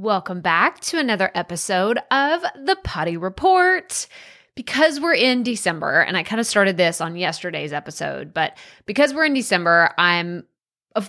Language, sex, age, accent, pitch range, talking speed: English, female, 20-39, American, 185-295 Hz, 155 wpm